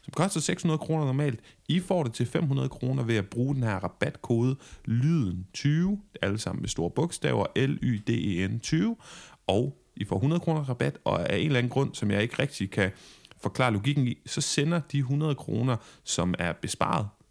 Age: 30-49